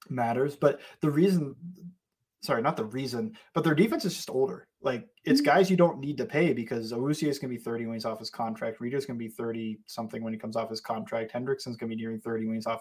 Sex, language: male, English